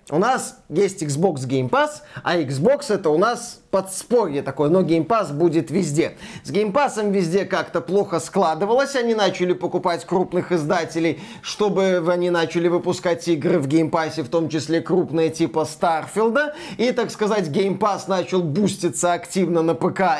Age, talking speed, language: 20-39, 160 wpm, Russian